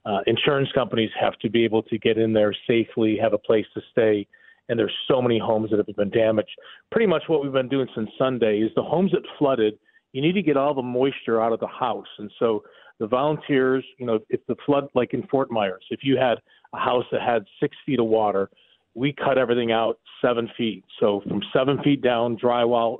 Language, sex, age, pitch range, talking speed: English, male, 40-59, 115-145 Hz, 225 wpm